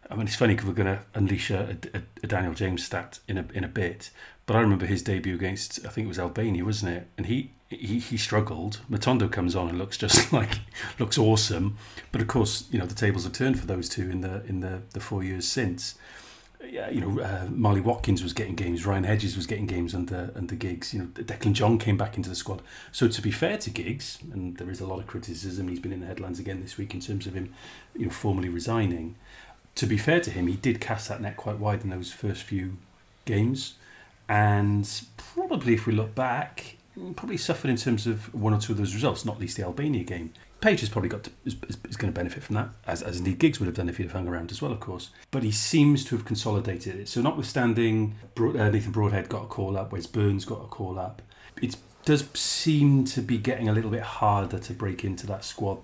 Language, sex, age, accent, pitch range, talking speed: English, male, 40-59, British, 95-115 Hz, 240 wpm